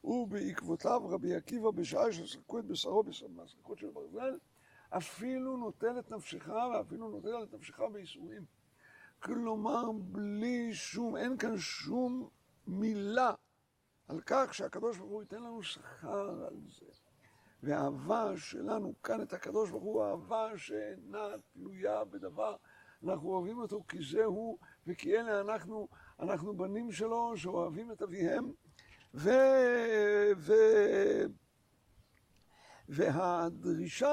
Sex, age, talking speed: male, 60-79, 115 wpm